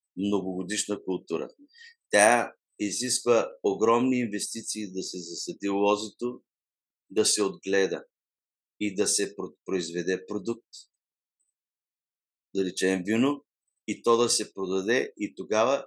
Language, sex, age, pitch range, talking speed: Bulgarian, male, 50-69, 95-125 Hz, 110 wpm